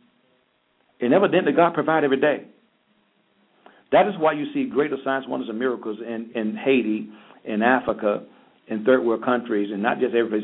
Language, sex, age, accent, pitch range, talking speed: English, male, 50-69, American, 105-130 Hz, 170 wpm